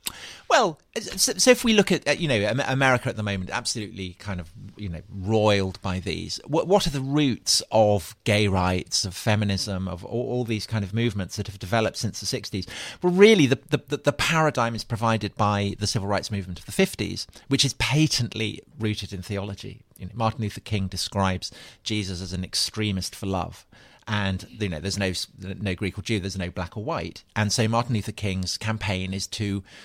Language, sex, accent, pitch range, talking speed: English, male, British, 95-120 Hz, 200 wpm